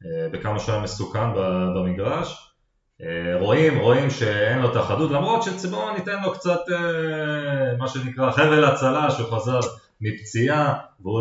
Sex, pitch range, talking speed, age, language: male, 100-145 Hz, 120 wpm, 30-49, Hebrew